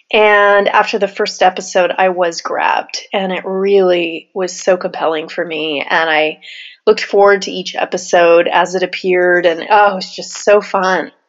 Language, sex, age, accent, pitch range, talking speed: English, female, 30-49, American, 185-220 Hz, 175 wpm